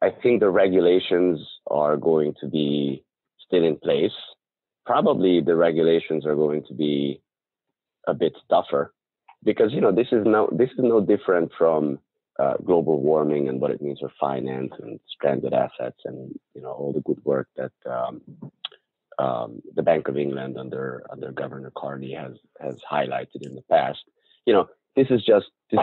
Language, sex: English, male